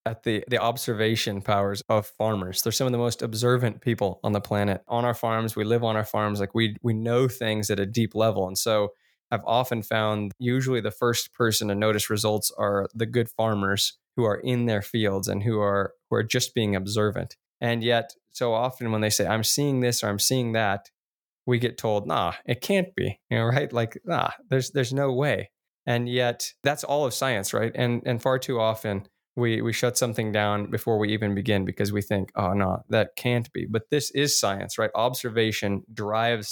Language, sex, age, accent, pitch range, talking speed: English, male, 20-39, American, 105-125 Hz, 210 wpm